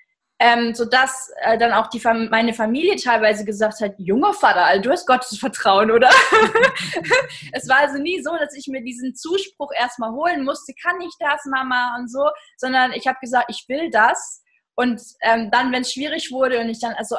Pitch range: 225-285 Hz